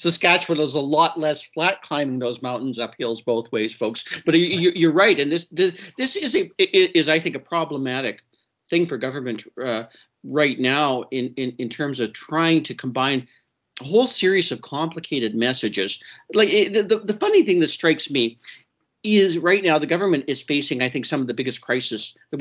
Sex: male